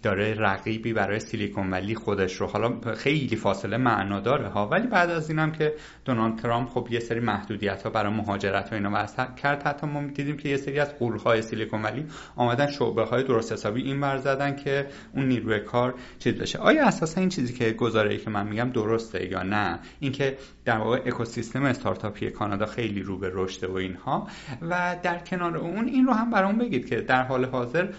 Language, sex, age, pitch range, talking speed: Persian, male, 30-49, 110-145 Hz, 195 wpm